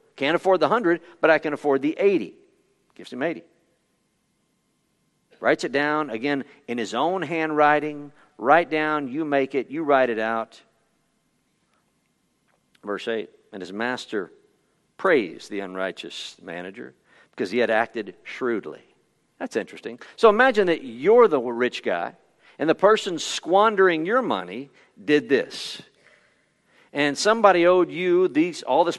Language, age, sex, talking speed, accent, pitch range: English, 50-69, male, 140 wpm, American, 140-210 Hz